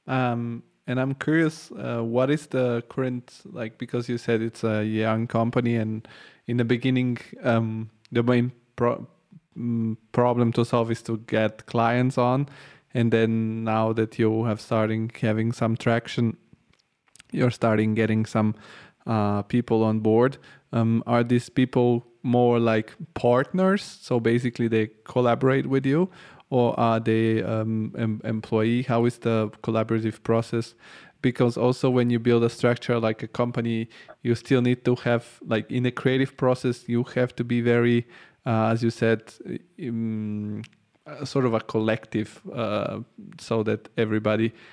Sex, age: male, 20-39